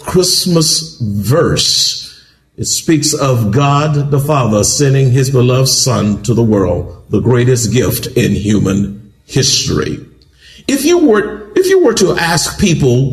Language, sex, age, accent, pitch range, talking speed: English, male, 50-69, American, 125-175 Hz, 135 wpm